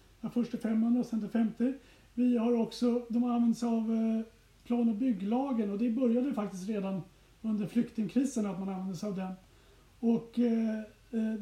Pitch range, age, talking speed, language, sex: 205-240 Hz, 30-49, 170 wpm, Swedish, male